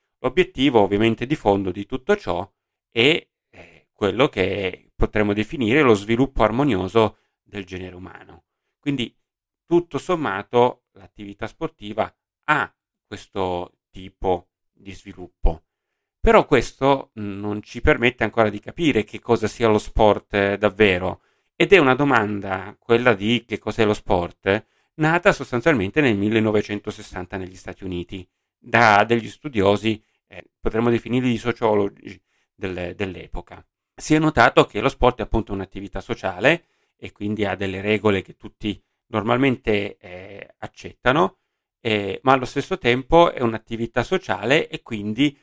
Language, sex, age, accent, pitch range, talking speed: Italian, male, 40-59, native, 100-125 Hz, 130 wpm